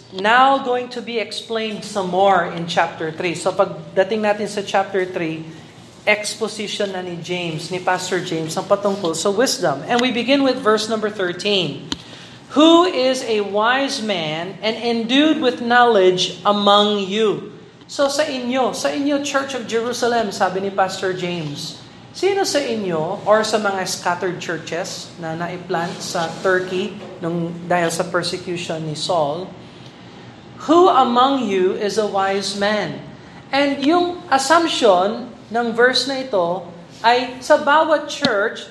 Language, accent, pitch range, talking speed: Filipino, native, 185-240 Hz, 145 wpm